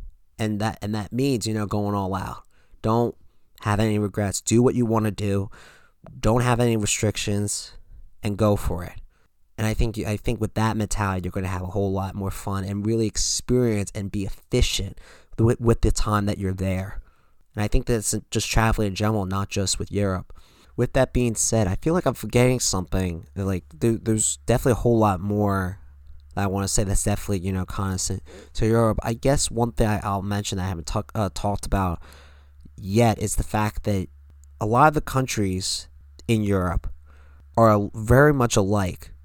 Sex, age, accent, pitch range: male, 20-39, American, 90-110 Hz